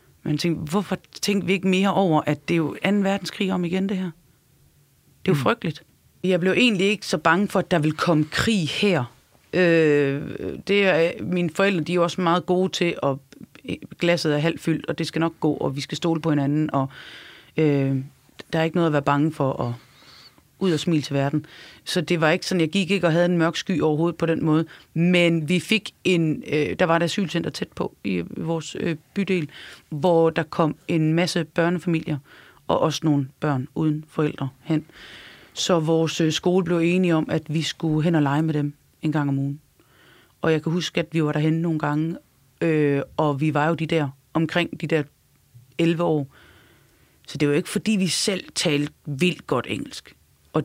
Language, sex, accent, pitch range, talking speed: Danish, female, native, 150-175 Hz, 210 wpm